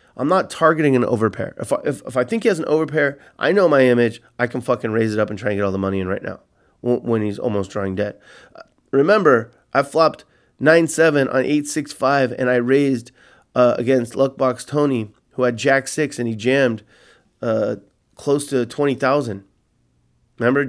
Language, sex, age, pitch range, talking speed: English, male, 30-49, 115-140 Hz, 200 wpm